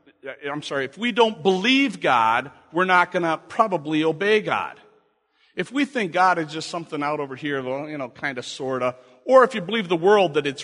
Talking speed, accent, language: 215 wpm, American, English